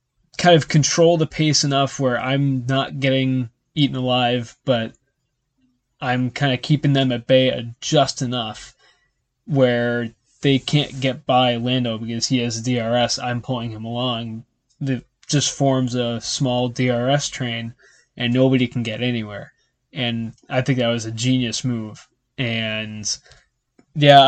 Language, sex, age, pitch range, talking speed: English, male, 20-39, 120-135 Hz, 145 wpm